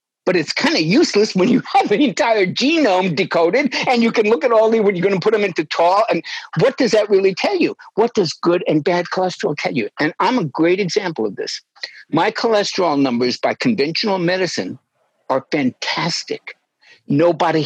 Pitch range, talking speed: 170-245 Hz, 195 wpm